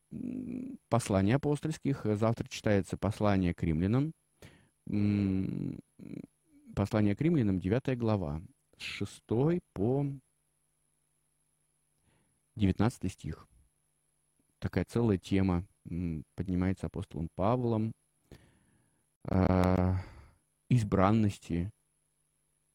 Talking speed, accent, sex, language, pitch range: 60 wpm, native, male, Russian, 90-120 Hz